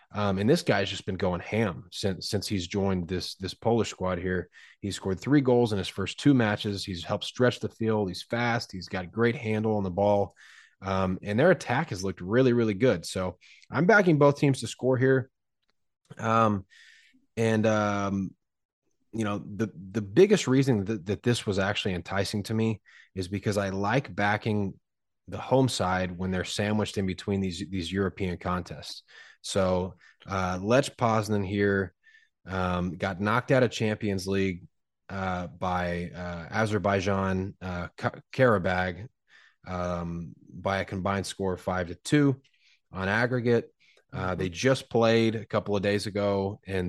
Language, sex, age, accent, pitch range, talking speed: English, male, 20-39, American, 95-110 Hz, 170 wpm